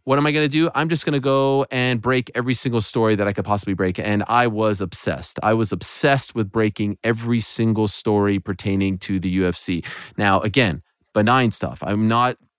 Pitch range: 105-130 Hz